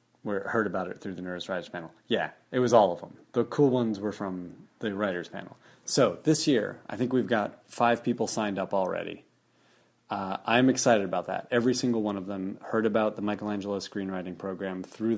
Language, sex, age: English, male, 30-49